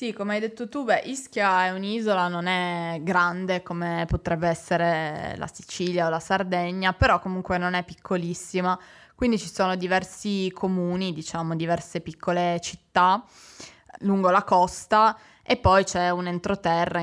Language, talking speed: Italian, 140 wpm